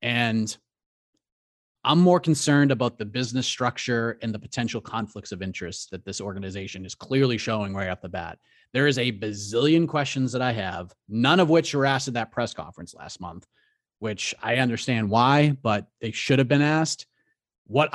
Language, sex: English, male